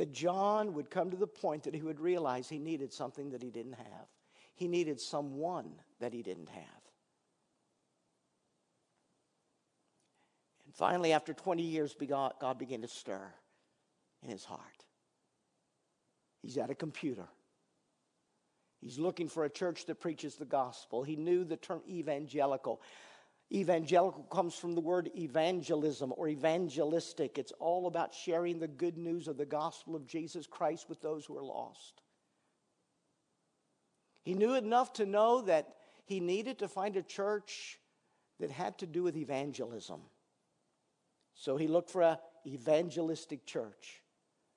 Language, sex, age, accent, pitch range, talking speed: English, male, 50-69, American, 145-175 Hz, 145 wpm